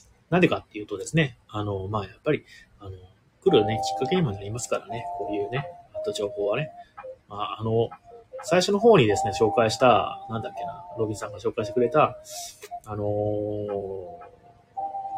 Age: 30-49